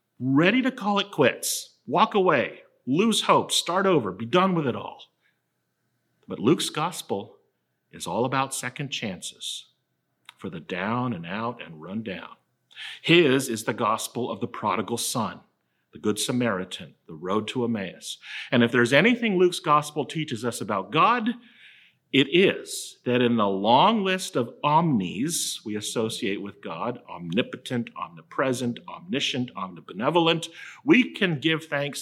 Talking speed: 145 wpm